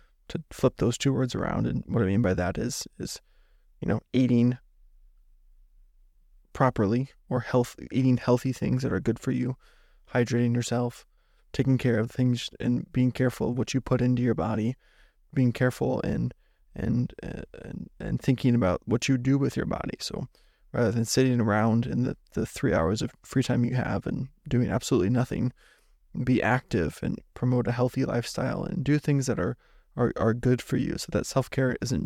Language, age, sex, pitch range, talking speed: English, 20-39, male, 120-130 Hz, 180 wpm